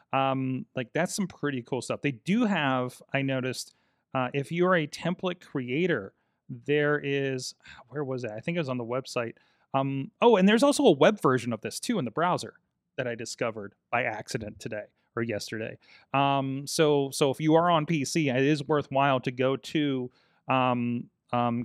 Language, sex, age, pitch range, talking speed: English, male, 30-49, 125-155 Hz, 190 wpm